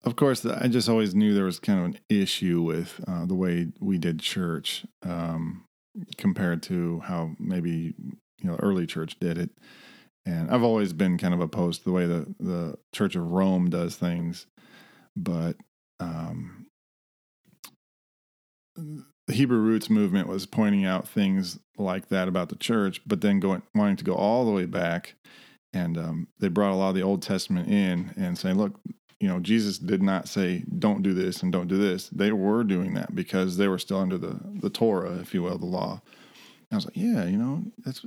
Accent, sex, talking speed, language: American, male, 195 wpm, English